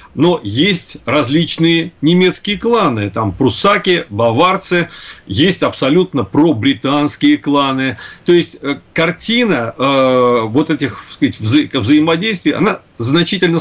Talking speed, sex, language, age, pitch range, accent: 100 wpm, male, Russian, 40-59, 130-170 Hz, native